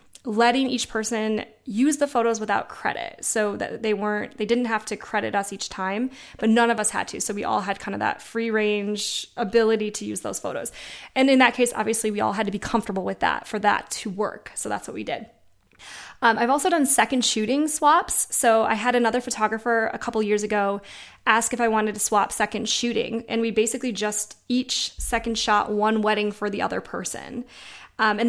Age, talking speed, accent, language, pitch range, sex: 20-39, 215 wpm, American, English, 210-245 Hz, female